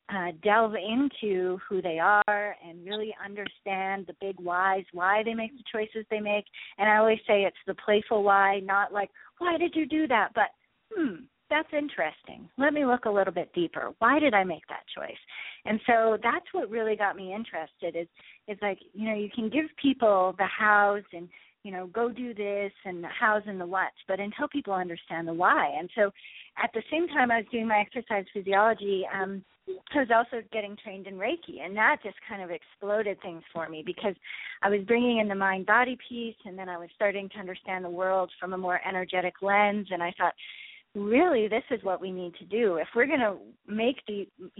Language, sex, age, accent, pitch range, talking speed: English, female, 40-59, American, 185-225 Hz, 210 wpm